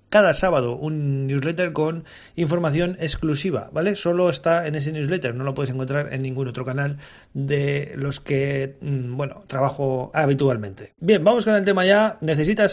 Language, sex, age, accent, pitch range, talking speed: Spanish, male, 30-49, Spanish, 140-175 Hz, 160 wpm